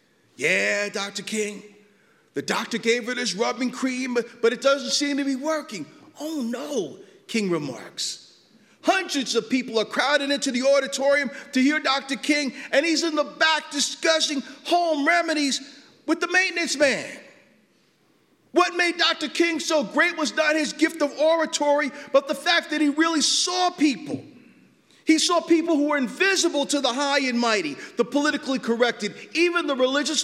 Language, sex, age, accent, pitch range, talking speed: English, male, 50-69, American, 255-315 Hz, 165 wpm